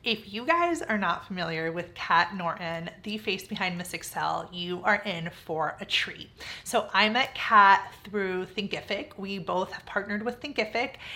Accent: American